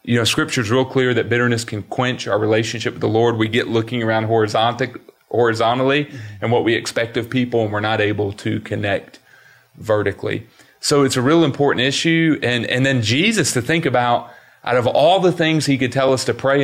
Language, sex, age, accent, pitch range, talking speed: English, male, 30-49, American, 110-135 Hz, 200 wpm